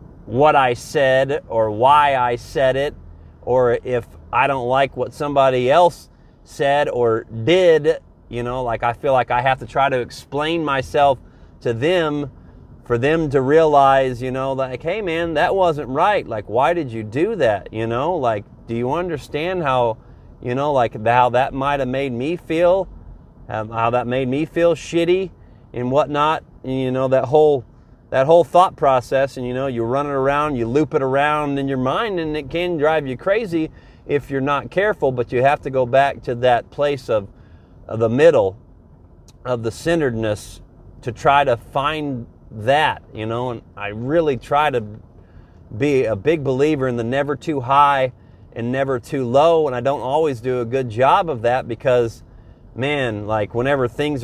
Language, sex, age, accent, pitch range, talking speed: English, male, 30-49, American, 115-145 Hz, 185 wpm